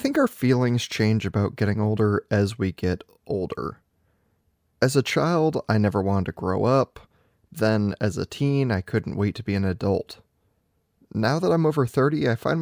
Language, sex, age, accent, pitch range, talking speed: English, male, 20-39, American, 105-140 Hz, 185 wpm